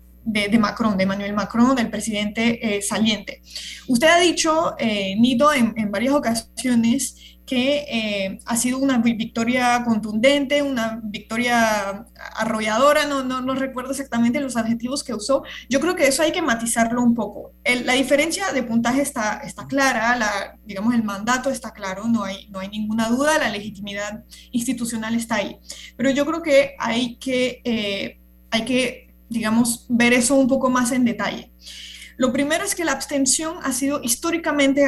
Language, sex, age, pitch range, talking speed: Spanish, female, 20-39, 220-275 Hz, 170 wpm